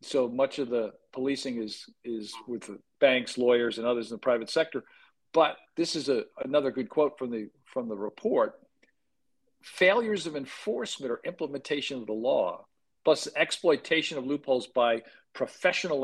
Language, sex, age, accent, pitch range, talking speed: English, male, 50-69, American, 120-145 Hz, 150 wpm